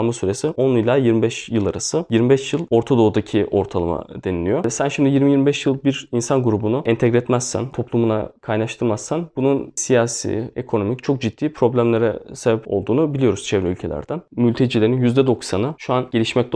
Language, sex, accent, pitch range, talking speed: Turkish, male, native, 110-135 Hz, 140 wpm